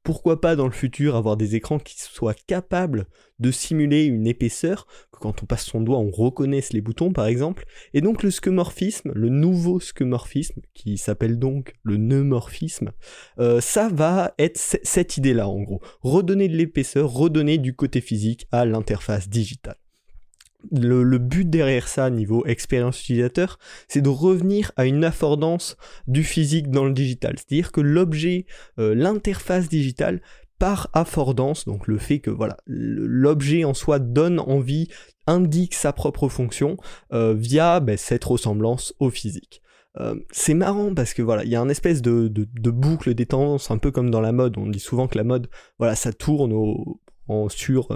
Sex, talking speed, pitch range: male, 175 wpm, 120-155 Hz